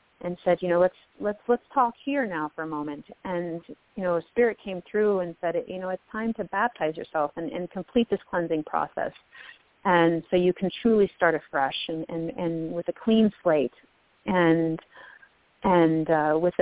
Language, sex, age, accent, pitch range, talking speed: English, female, 40-59, American, 160-195 Hz, 190 wpm